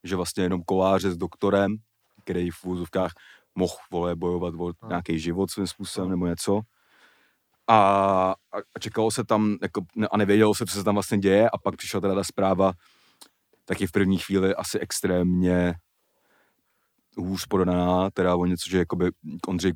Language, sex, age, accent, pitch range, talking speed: Czech, male, 30-49, native, 90-95 Hz, 160 wpm